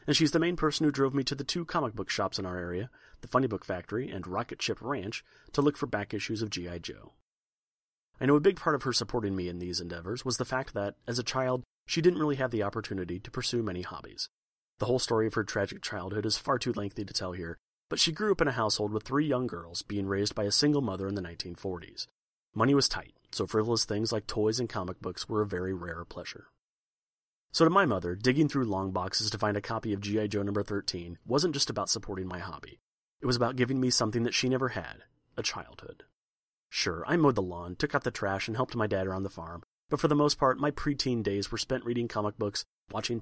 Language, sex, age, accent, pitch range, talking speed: English, male, 30-49, American, 95-130 Hz, 245 wpm